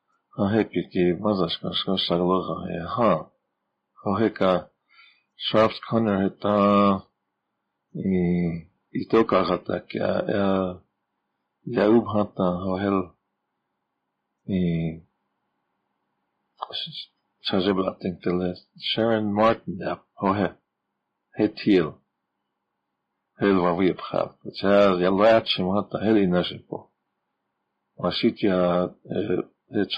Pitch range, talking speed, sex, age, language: 90-115 Hz, 50 wpm, male, 50-69, English